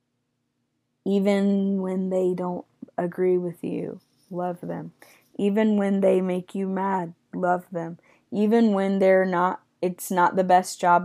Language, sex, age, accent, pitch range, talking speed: English, female, 20-39, American, 175-205 Hz, 140 wpm